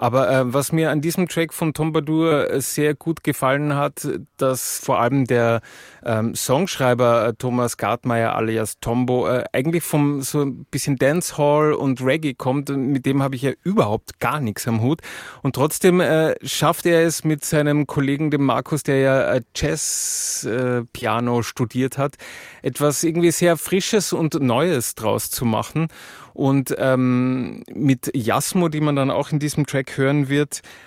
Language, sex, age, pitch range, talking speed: German, male, 30-49, 125-145 Hz, 170 wpm